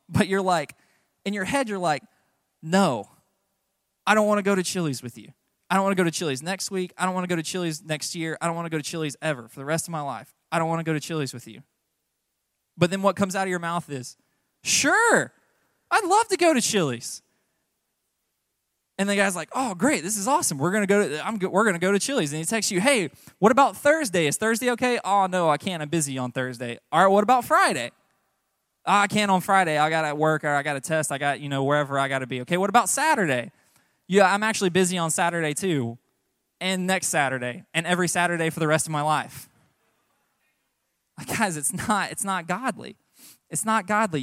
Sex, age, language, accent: male, 20-39, English, American